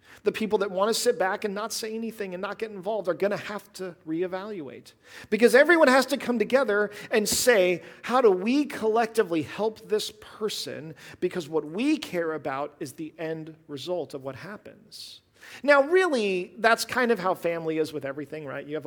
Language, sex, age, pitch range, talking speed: English, male, 40-59, 140-210 Hz, 190 wpm